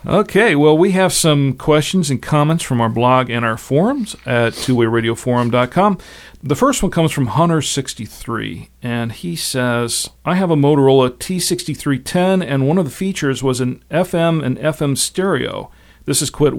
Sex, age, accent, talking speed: male, 40-59, American, 160 wpm